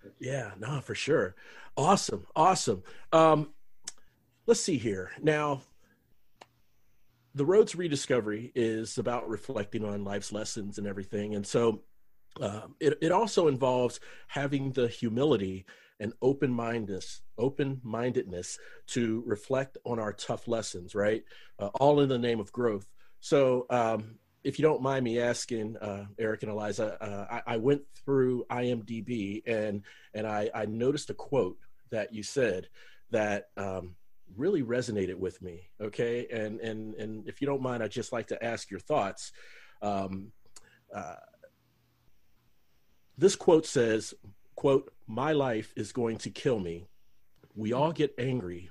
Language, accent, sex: English, American, male